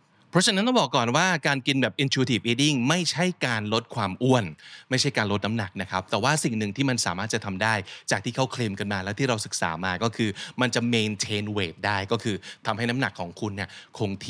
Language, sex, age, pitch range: Thai, male, 20-39, 110-145 Hz